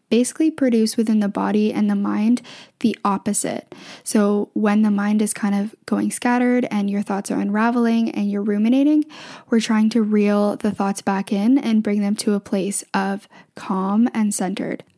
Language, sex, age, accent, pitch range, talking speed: English, female, 10-29, American, 205-230 Hz, 180 wpm